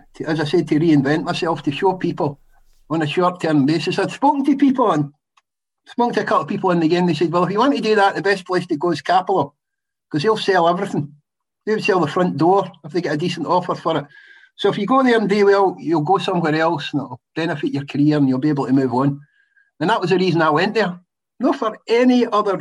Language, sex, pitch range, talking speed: English, male, 145-190 Hz, 255 wpm